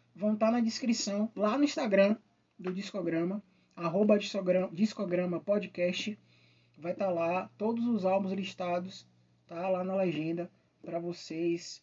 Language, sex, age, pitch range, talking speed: Portuguese, male, 20-39, 160-235 Hz, 130 wpm